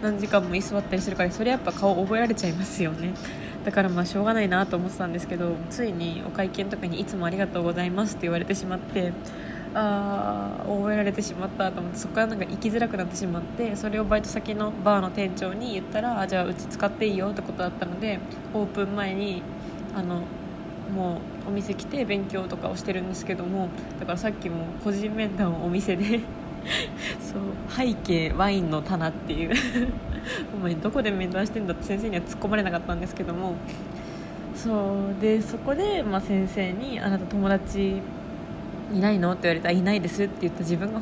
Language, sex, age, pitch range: Japanese, female, 20-39, 185-250 Hz